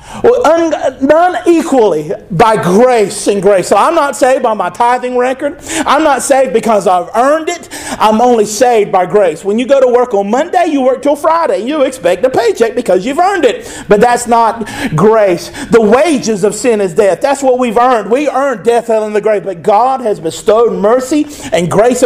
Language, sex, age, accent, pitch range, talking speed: English, male, 50-69, American, 230-300 Hz, 200 wpm